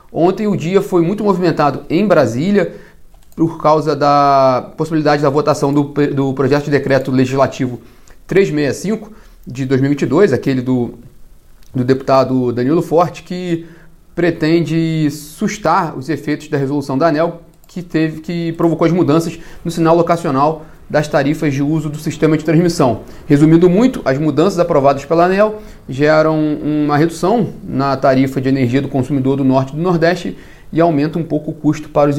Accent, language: Brazilian, Portuguese